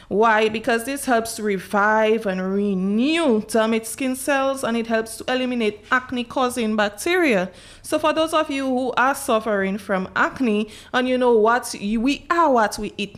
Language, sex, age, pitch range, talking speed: English, female, 20-39, 195-245 Hz, 165 wpm